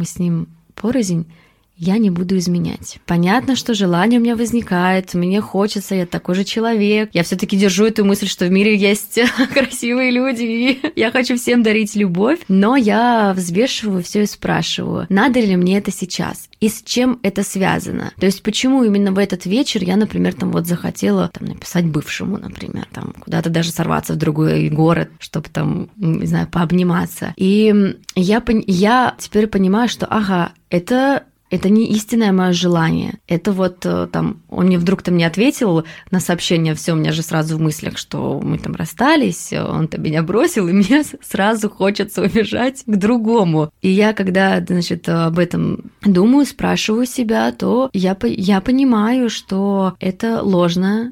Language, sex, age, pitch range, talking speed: Russian, female, 20-39, 175-225 Hz, 165 wpm